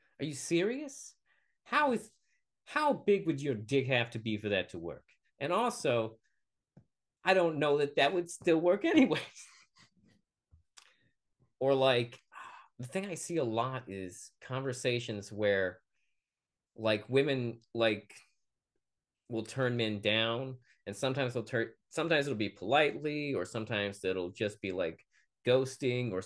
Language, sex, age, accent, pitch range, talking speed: English, male, 30-49, American, 115-155 Hz, 140 wpm